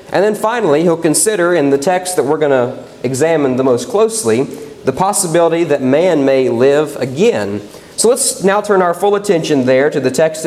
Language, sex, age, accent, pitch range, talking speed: English, male, 40-59, American, 155-200 Hz, 195 wpm